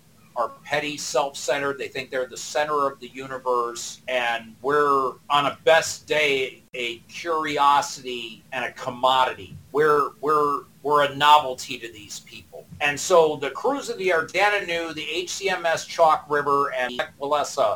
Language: English